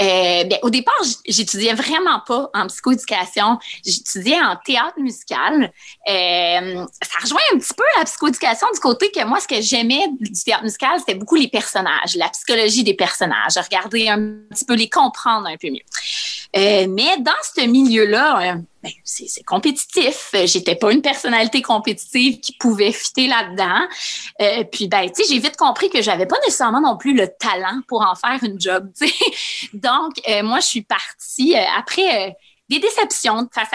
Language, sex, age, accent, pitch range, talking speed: French, female, 30-49, Canadian, 200-290 Hz, 180 wpm